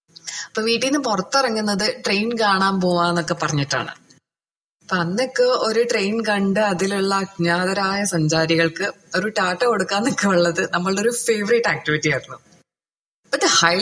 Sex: female